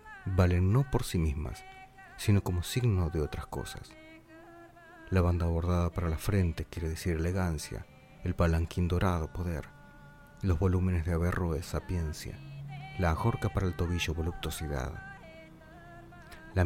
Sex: male